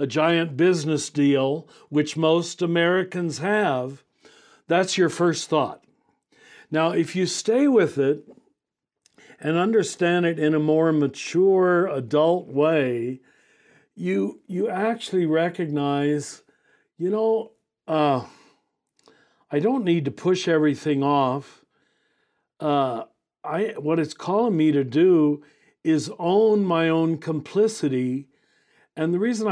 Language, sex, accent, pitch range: English, male, American, 150-185 Hz